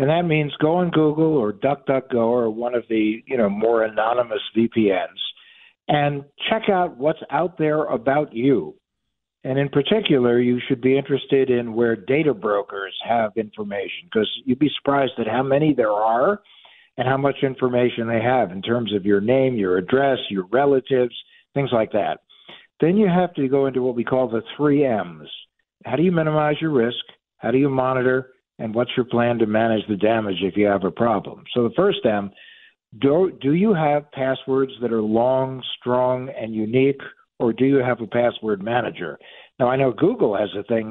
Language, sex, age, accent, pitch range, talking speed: English, male, 60-79, American, 115-140 Hz, 190 wpm